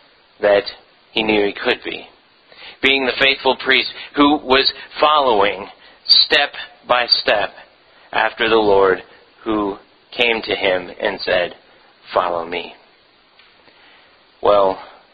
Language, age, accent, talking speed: English, 40-59, American, 110 wpm